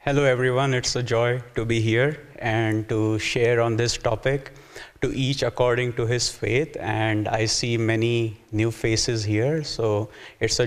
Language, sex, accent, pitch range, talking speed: English, male, Indian, 115-140 Hz, 170 wpm